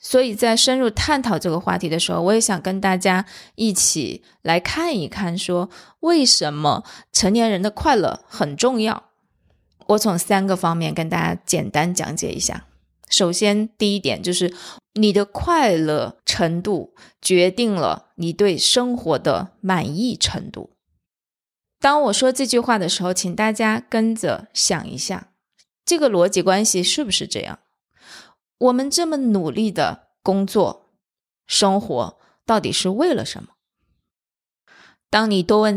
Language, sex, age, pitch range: Chinese, female, 20-39, 180-225 Hz